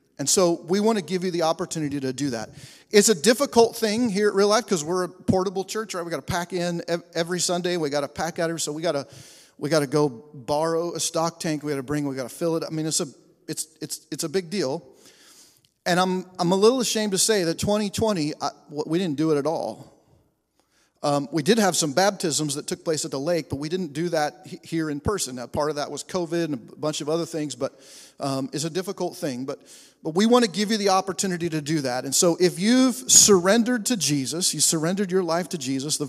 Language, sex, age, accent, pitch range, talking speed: English, male, 40-59, American, 140-180 Hz, 245 wpm